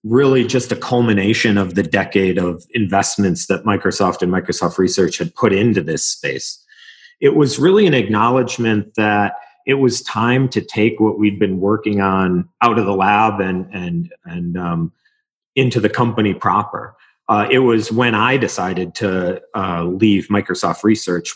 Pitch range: 100-125 Hz